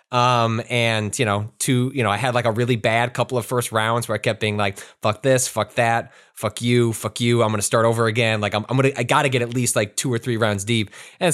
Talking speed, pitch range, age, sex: 270 wpm, 100-130 Hz, 20-39, male